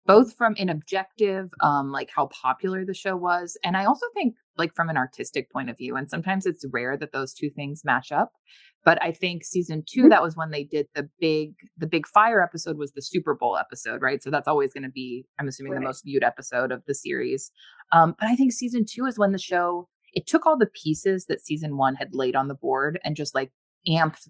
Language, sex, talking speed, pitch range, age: English, female, 235 wpm, 140-185 Hz, 20-39